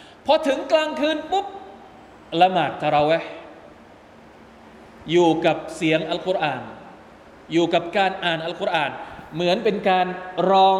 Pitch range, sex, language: 145-190 Hz, male, Thai